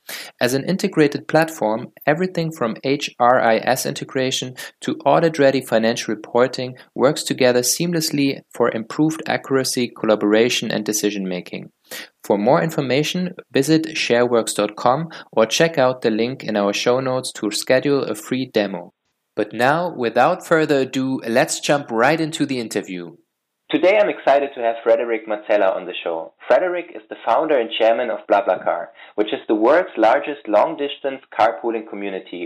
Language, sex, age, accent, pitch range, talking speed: English, male, 20-39, German, 110-145 Hz, 140 wpm